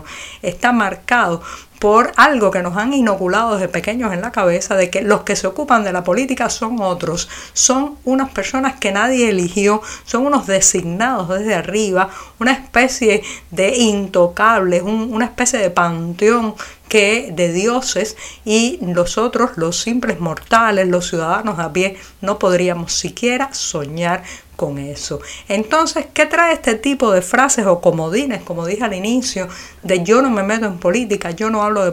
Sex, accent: female, American